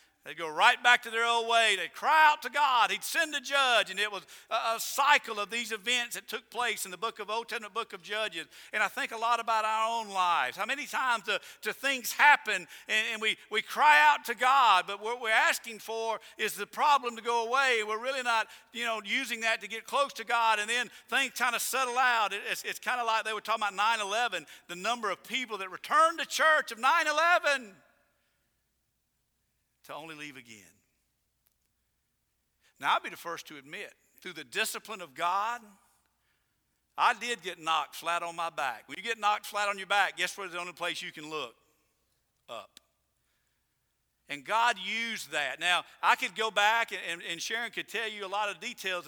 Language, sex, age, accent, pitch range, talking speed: English, male, 50-69, American, 200-245 Hz, 210 wpm